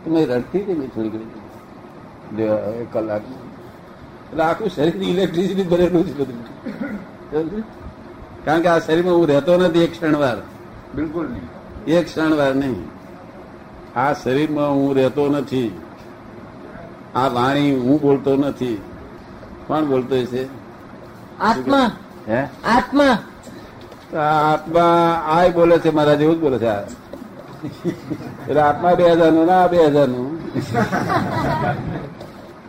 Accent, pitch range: native, 135-180 Hz